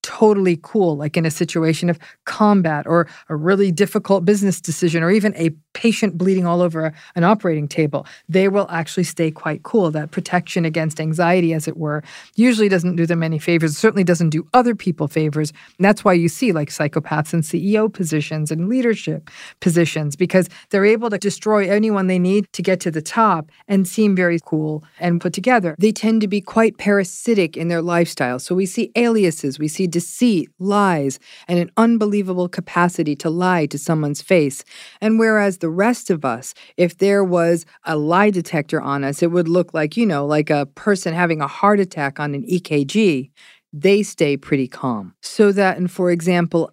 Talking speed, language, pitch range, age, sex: 190 wpm, English, 160-200 Hz, 40-59, female